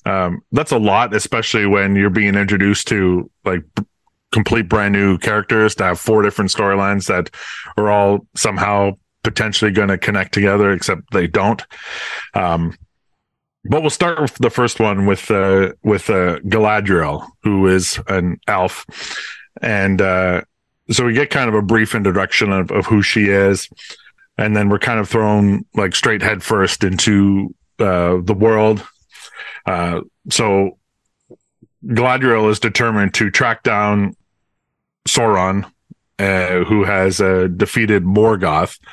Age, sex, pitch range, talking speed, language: 30-49, male, 95-110 Hz, 145 wpm, English